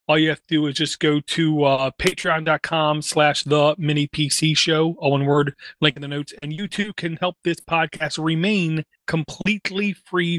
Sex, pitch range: male, 145-170 Hz